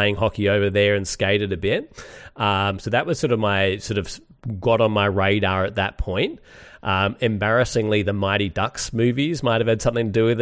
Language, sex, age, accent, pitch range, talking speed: English, male, 30-49, Australian, 100-120 Hz, 215 wpm